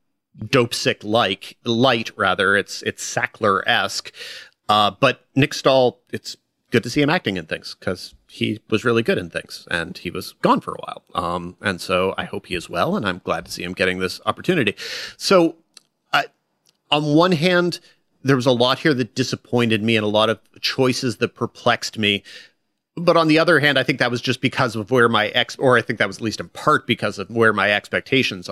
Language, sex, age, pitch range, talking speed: English, male, 30-49, 105-145 Hz, 210 wpm